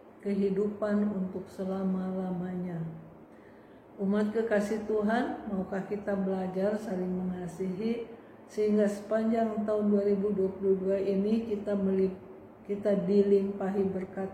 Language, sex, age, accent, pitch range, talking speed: Indonesian, female, 50-69, native, 190-205 Hz, 90 wpm